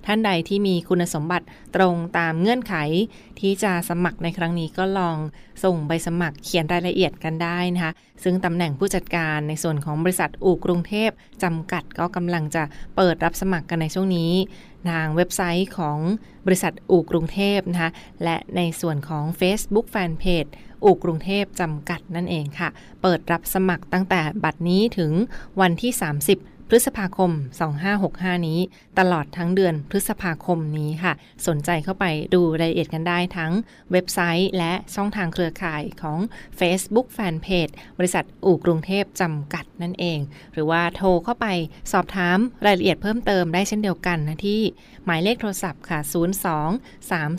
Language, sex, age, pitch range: Thai, female, 20-39, 165-190 Hz